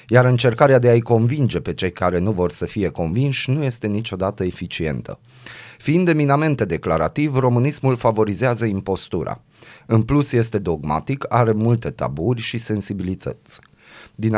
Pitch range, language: 95-130 Hz, Romanian